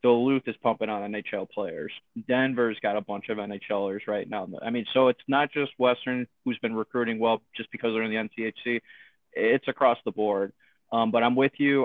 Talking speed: 205 wpm